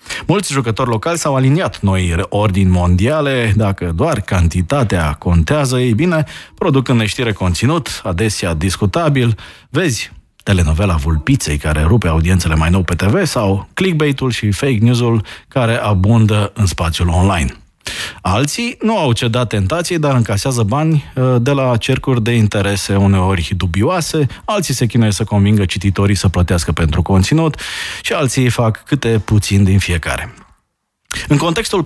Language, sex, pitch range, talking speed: Romanian, male, 90-135 Hz, 140 wpm